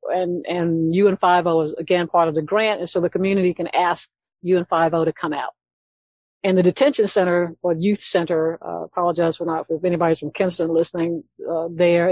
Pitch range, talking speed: 160-180 Hz, 220 wpm